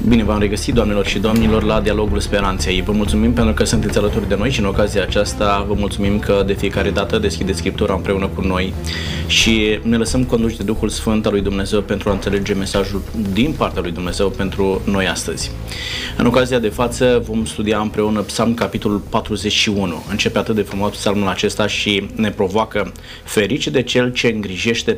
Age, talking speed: 20-39, 185 wpm